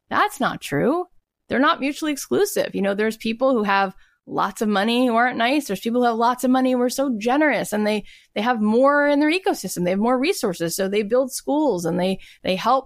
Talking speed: 235 wpm